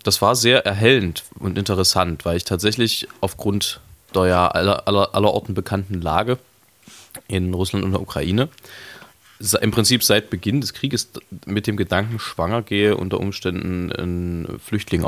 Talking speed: 145 wpm